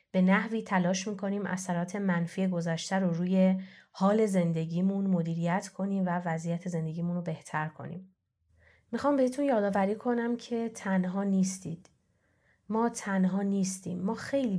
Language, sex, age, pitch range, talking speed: Persian, female, 30-49, 175-205 Hz, 130 wpm